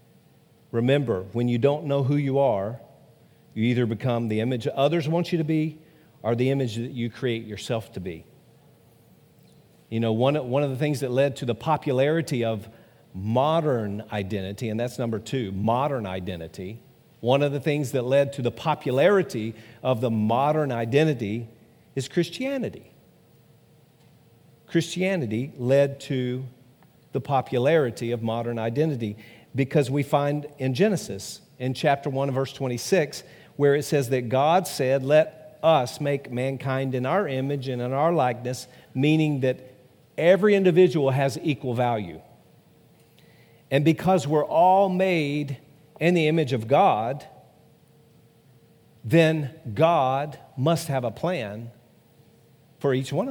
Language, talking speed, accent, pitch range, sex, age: English, 140 wpm, American, 120-155 Hz, male, 50-69